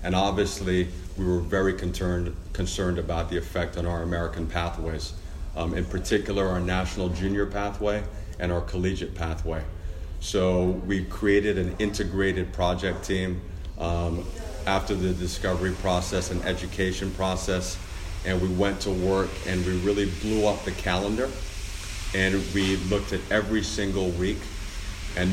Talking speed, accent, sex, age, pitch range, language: 140 wpm, American, male, 40-59, 90-95 Hz, English